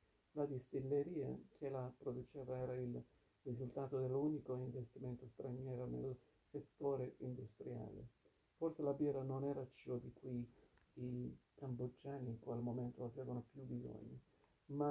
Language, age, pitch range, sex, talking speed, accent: Italian, 60-79, 125-135 Hz, male, 125 wpm, native